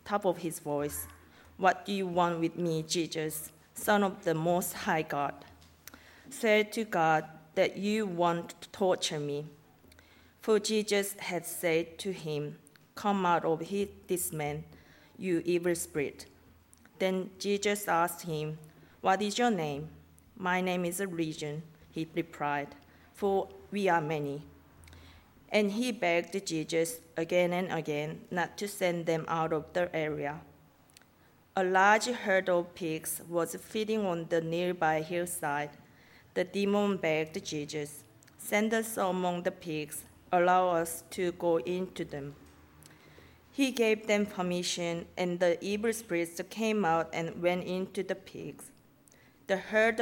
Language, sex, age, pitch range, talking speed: English, female, 40-59, 155-195 Hz, 140 wpm